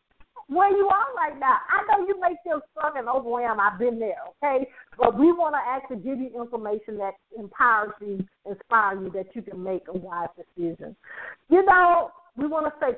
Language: English